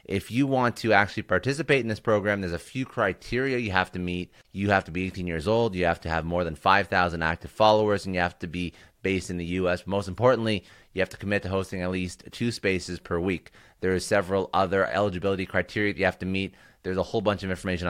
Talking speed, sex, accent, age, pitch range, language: 245 wpm, male, American, 30-49, 85-105 Hz, English